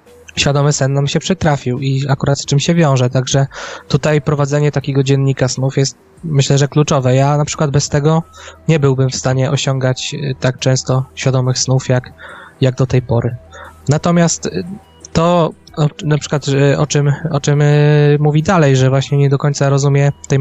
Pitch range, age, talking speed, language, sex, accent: 135-150 Hz, 20-39, 170 wpm, Polish, male, native